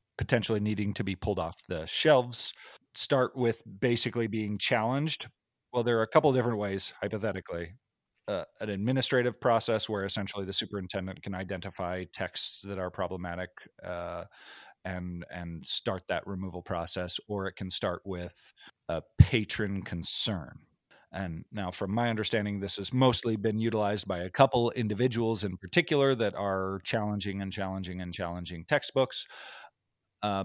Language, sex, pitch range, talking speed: English, male, 95-115 Hz, 150 wpm